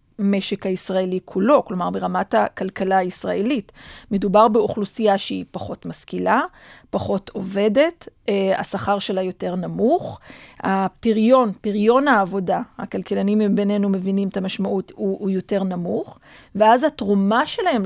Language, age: Hebrew, 40-59